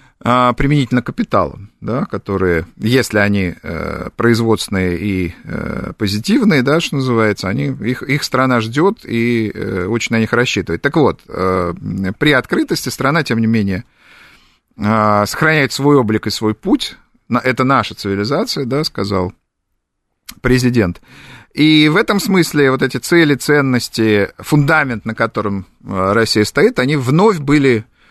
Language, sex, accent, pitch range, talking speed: Russian, male, native, 100-130 Hz, 115 wpm